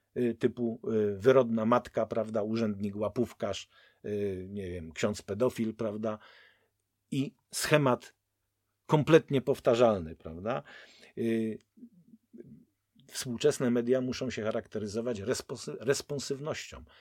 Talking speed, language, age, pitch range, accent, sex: 80 wpm, Polish, 50-69, 110-135 Hz, native, male